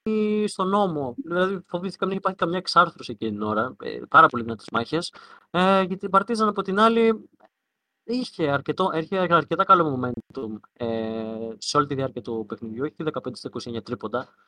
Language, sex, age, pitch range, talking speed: Greek, male, 20-39, 125-170 Hz, 165 wpm